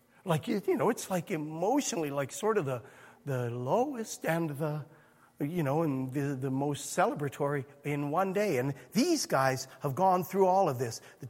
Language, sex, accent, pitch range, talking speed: English, male, American, 145-195 Hz, 185 wpm